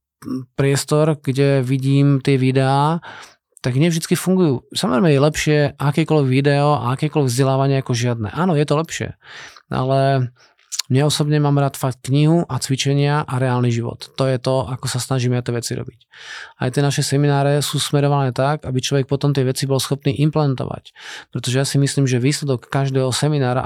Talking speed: 165 wpm